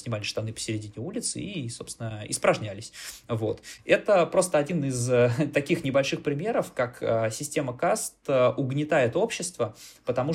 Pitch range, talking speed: 115-150 Hz, 120 wpm